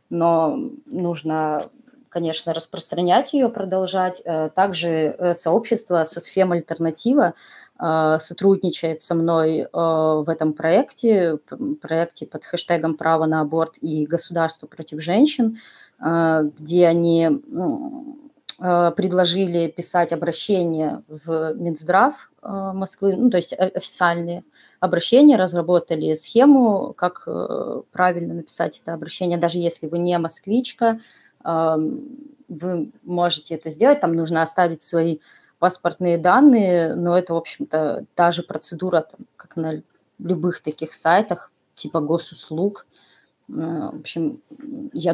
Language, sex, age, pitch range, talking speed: Russian, female, 20-39, 165-195 Hz, 105 wpm